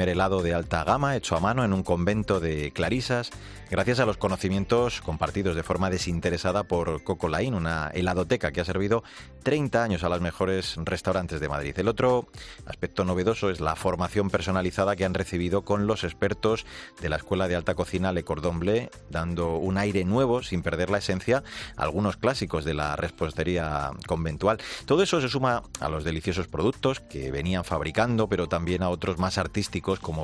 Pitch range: 85-105 Hz